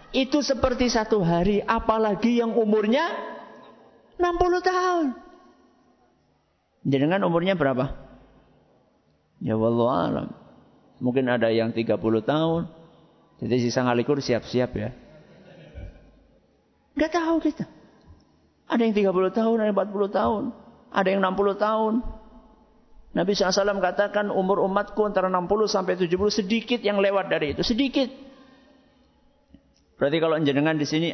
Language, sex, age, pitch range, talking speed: Malay, male, 50-69, 150-225 Hz, 120 wpm